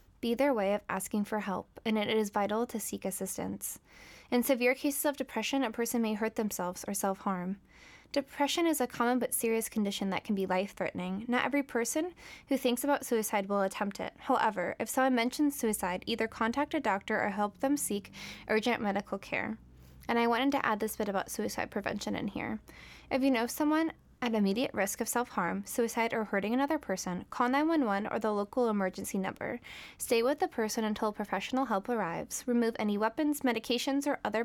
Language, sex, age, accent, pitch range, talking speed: English, female, 10-29, American, 200-255 Hz, 195 wpm